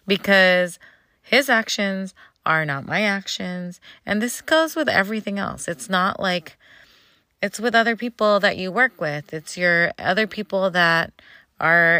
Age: 20-39